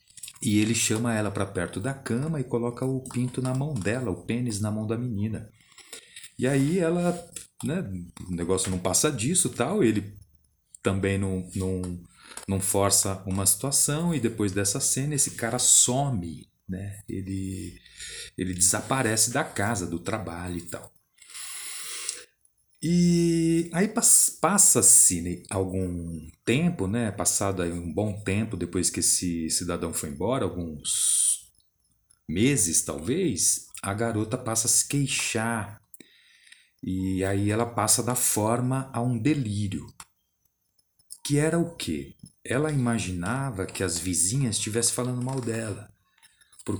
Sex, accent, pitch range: male, Brazilian, 95-130 Hz